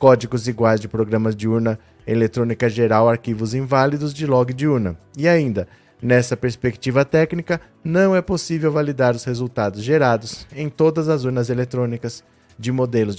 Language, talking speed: Portuguese, 150 wpm